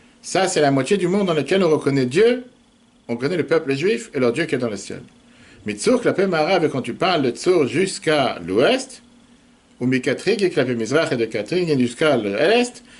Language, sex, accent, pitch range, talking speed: French, male, French, 130-185 Hz, 200 wpm